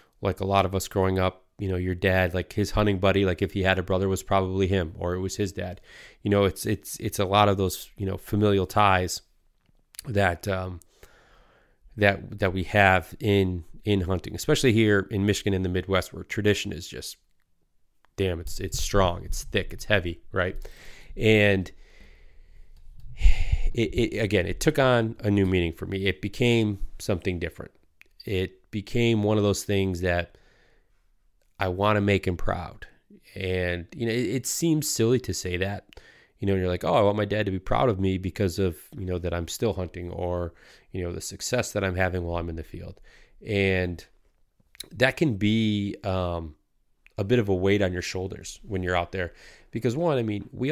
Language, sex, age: English, male, 30-49